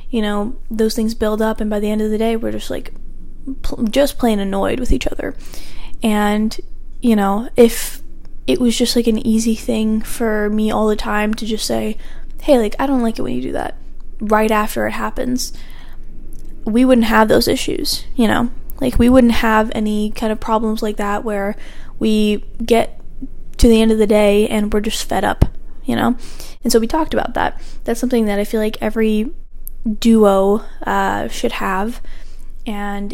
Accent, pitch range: American, 205-230 Hz